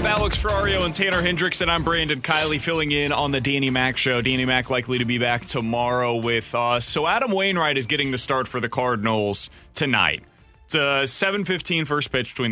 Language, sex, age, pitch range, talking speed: English, male, 30-49, 115-165 Hz, 205 wpm